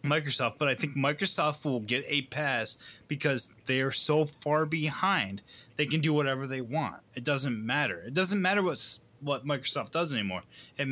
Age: 20-39